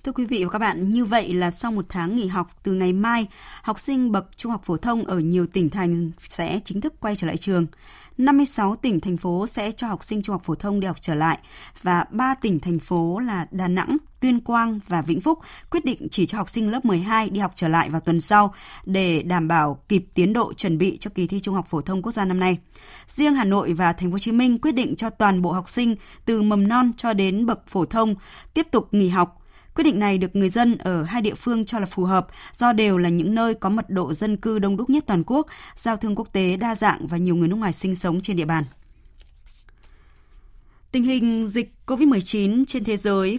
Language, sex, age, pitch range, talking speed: Vietnamese, female, 20-39, 180-235 Hz, 245 wpm